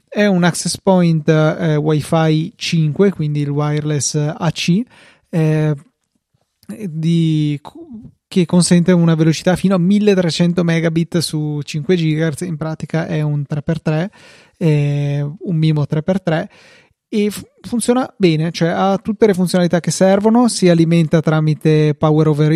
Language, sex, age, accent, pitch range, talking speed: Italian, male, 30-49, native, 155-180 Hz, 130 wpm